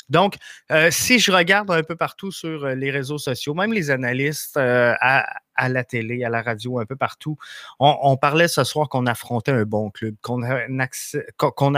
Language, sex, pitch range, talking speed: French, male, 125-140 Hz, 205 wpm